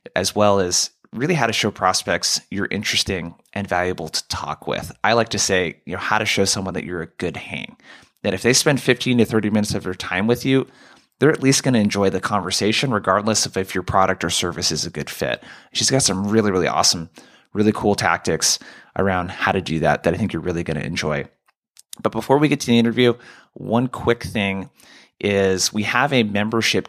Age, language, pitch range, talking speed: 20-39, English, 95-115 Hz, 220 wpm